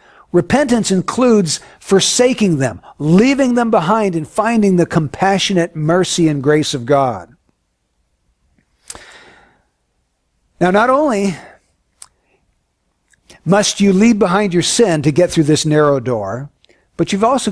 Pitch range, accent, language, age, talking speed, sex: 140-200 Hz, American, English, 60-79, 115 wpm, male